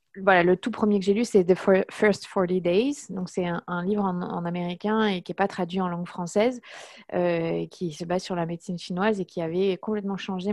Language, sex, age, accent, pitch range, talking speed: French, female, 20-39, French, 175-215 Hz, 240 wpm